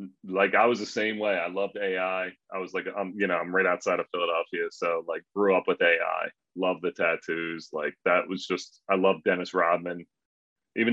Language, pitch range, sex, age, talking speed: English, 90-95 Hz, male, 30-49, 210 wpm